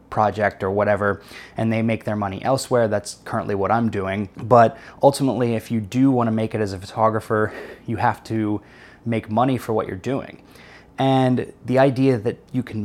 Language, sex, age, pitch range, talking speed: English, male, 20-39, 105-120 Hz, 190 wpm